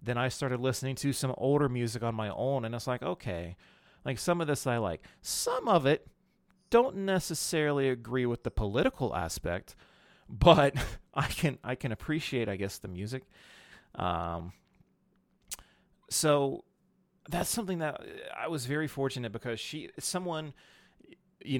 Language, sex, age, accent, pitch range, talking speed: English, male, 30-49, American, 100-135 Hz, 150 wpm